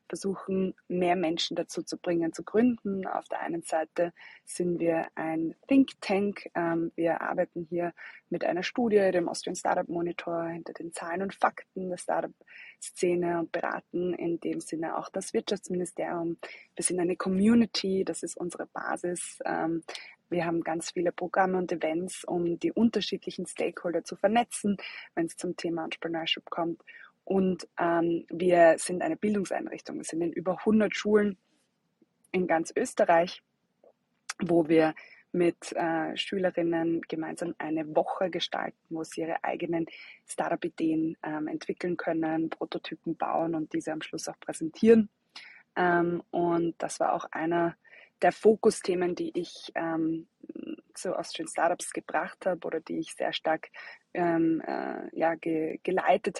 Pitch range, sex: 165-195 Hz, female